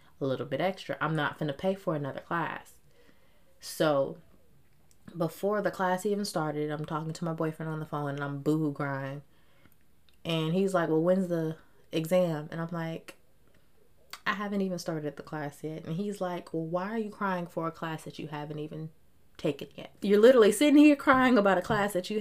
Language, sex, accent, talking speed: English, female, American, 200 wpm